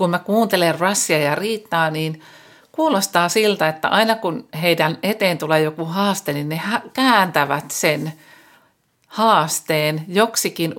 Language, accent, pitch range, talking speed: Finnish, native, 155-195 Hz, 135 wpm